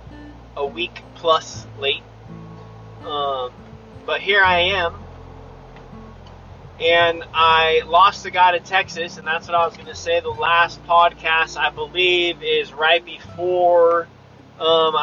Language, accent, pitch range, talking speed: English, American, 150-185 Hz, 130 wpm